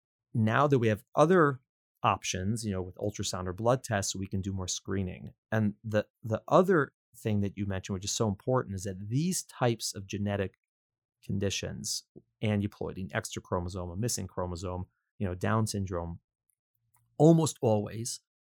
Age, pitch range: 30-49, 100-120 Hz